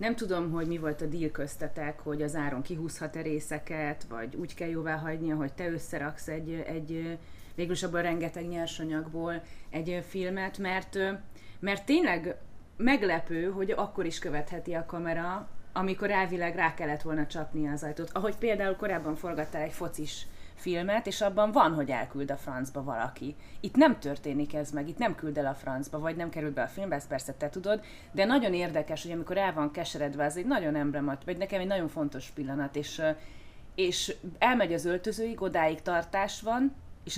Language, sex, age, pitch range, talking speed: Hungarian, female, 30-49, 150-195 Hz, 175 wpm